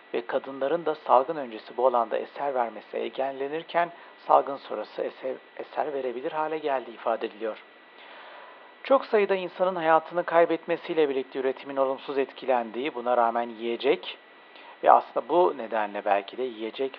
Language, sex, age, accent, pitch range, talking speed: Turkish, male, 60-79, native, 120-170 Hz, 130 wpm